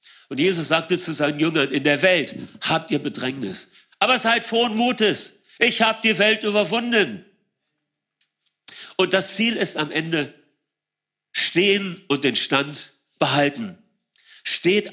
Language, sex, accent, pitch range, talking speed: German, male, German, 140-195 Hz, 135 wpm